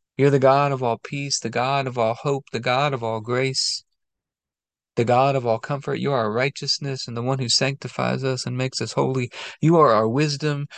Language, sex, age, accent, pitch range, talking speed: English, male, 40-59, American, 115-145 Hz, 215 wpm